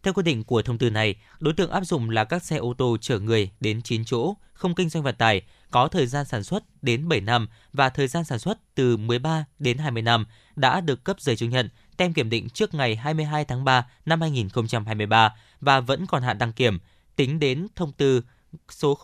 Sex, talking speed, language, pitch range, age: male, 225 wpm, Vietnamese, 115-160 Hz, 20-39